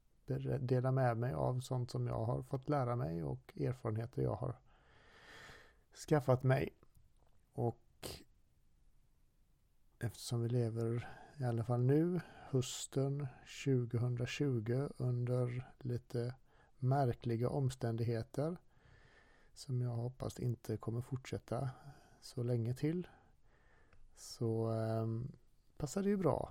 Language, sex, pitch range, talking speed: Swedish, male, 115-130 Hz, 100 wpm